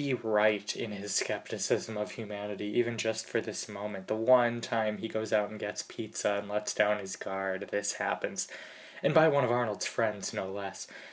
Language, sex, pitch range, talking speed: English, male, 105-120 Hz, 195 wpm